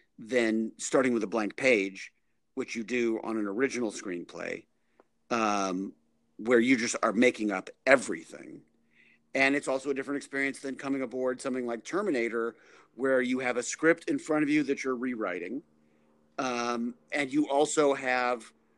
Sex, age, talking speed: male, 50-69, 160 wpm